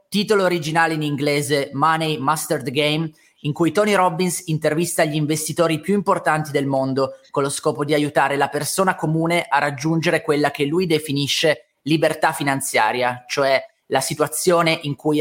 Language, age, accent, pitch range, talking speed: Italian, 30-49, native, 145-175 Hz, 155 wpm